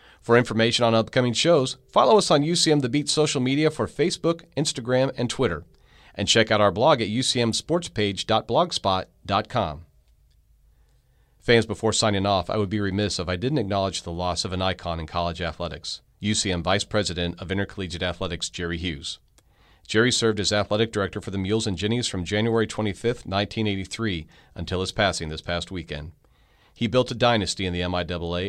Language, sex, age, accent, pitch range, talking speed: English, male, 40-59, American, 85-110 Hz, 170 wpm